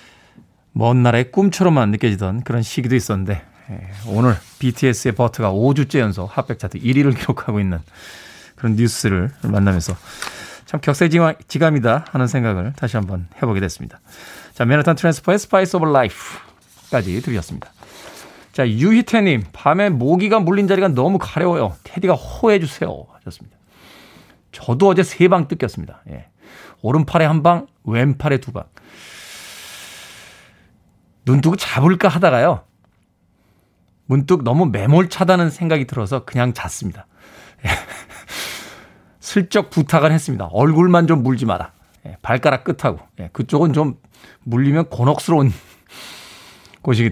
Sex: male